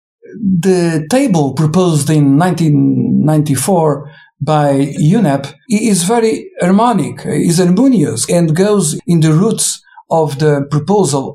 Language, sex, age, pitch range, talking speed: English, male, 50-69, 150-195 Hz, 105 wpm